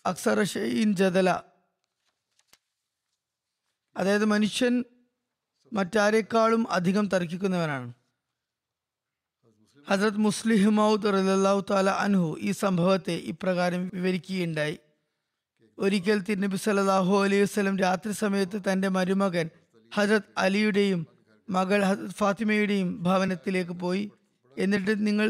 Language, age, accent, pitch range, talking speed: Malayalam, 20-39, native, 180-215 Hz, 80 wpm